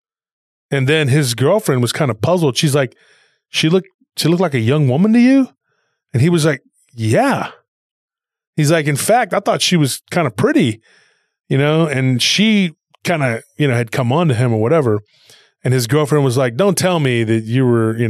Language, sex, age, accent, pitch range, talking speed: English, male, 20-39, American, 130-180 Hz, 205 wpm